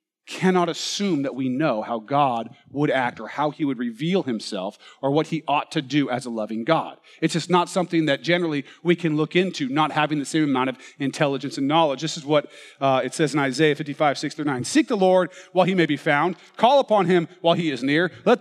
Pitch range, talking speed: 155-215 Hz, 230 wpm